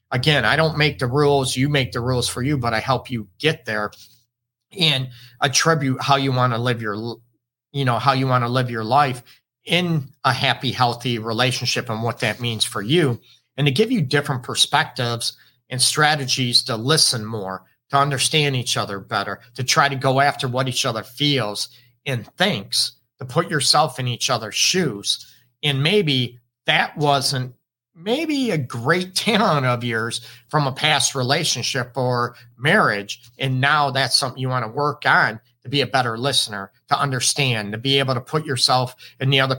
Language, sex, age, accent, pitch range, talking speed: English, male, 40-59, American, 120-140 Hz, 185 wpm